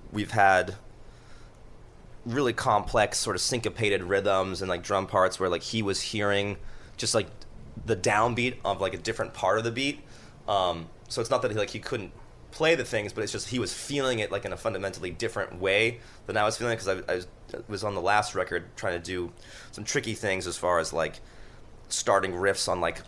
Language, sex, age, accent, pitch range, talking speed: English, male, 30-49, American, 95-115 Hz, 205 wpm